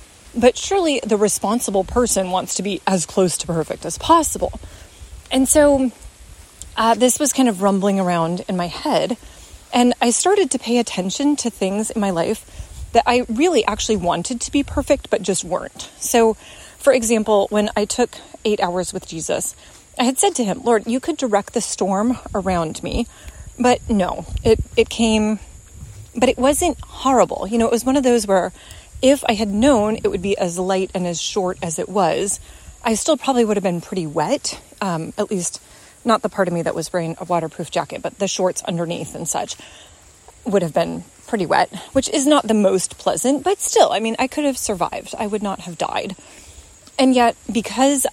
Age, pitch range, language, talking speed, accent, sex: 30-49, 185-255 Hz, English, 195 wpm, American, female